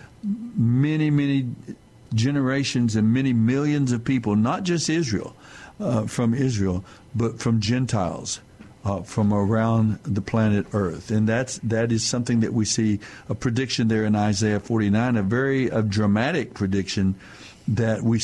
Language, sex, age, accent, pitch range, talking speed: English, male, 60-79, American, 105-125 Hz, 140 wpm